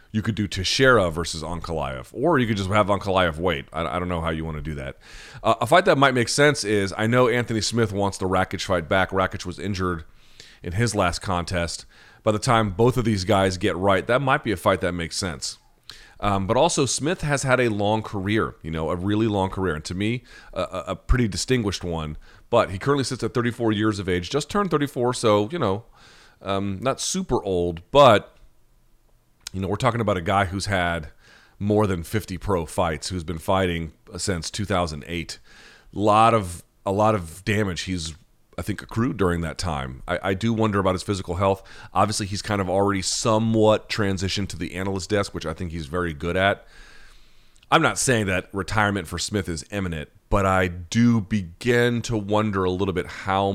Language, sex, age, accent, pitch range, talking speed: English, male, 40-59, American, 90-110 Hz, 205 wpm